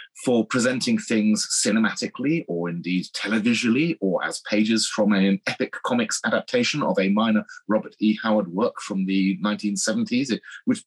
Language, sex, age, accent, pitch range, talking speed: English, male, 30-49, British, 95-165 Hz, 145 wpm